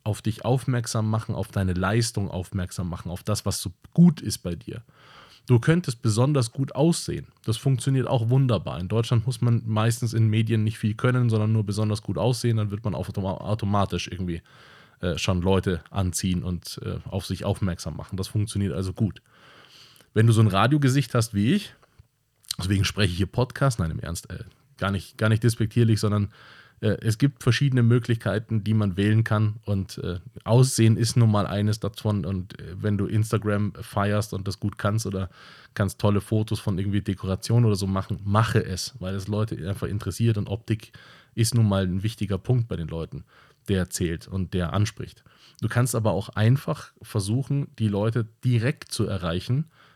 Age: 20-39